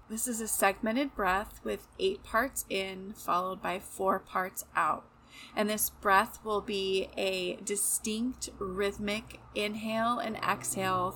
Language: English